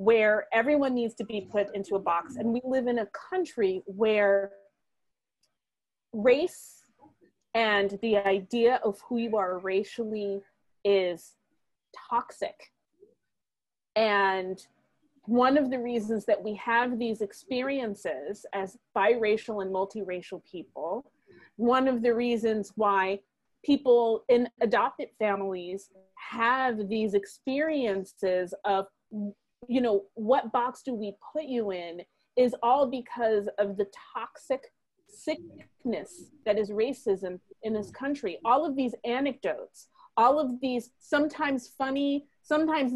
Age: 30-49